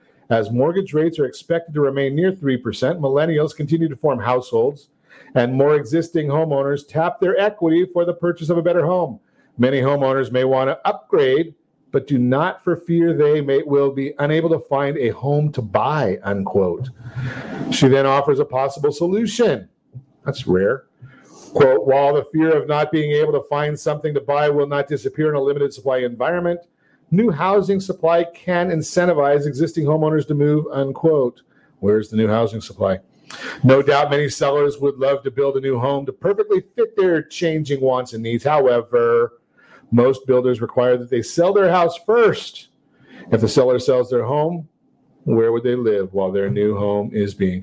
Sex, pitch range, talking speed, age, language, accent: male, 135-175 Hz, 175 wpm, 50-69, English, American